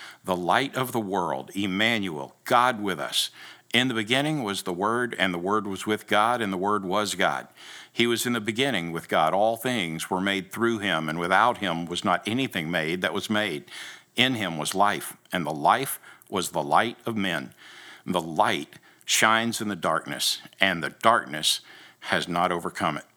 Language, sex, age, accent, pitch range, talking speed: English, male, 50-69, American, 90-115 Hz, 190 wpm